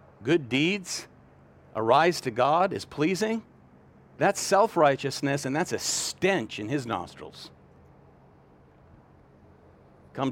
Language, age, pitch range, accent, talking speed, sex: English, 50-69, 100-150 Hz, American, 105 wpm, male